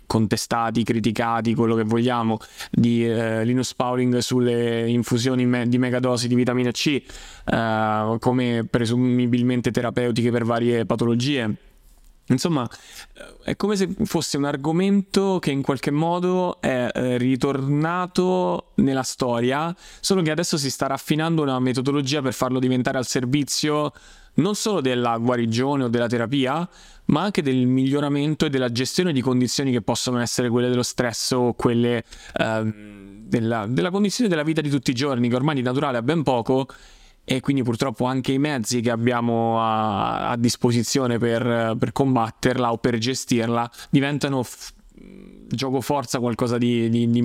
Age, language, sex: 20-39, Italian, male